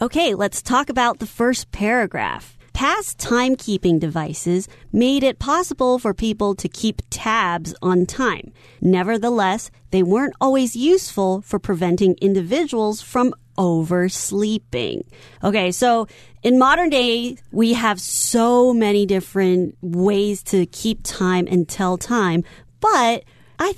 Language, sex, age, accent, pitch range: Chinese, female, 30-49, American, 185-245 Hz